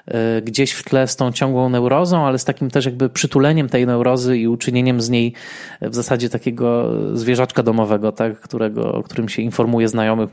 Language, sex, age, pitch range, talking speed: Polish, male, 20-39, 110-130 Hz, 180 wpm